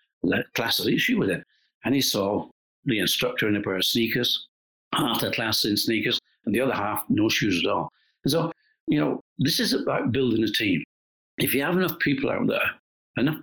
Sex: male